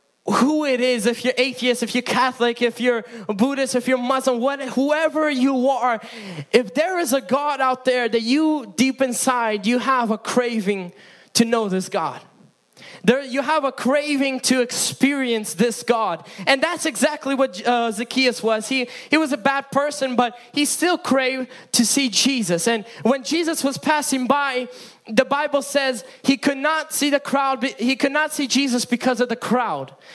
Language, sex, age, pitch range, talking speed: English, male, 20-39, 235-280 Hz, 180 wpm